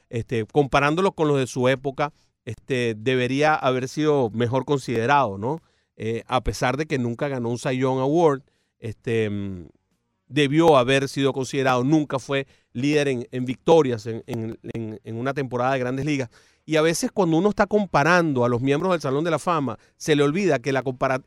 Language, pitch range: Spanish, 130-160 Hz